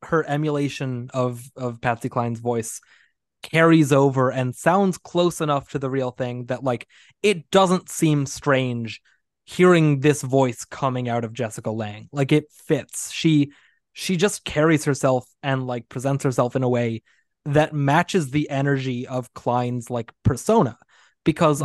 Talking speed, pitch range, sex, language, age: 150 wpm, 120-150 Hz, male, English, 20-39